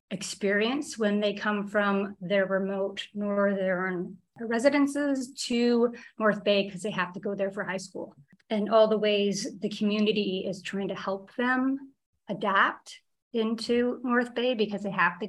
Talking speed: 155 wpm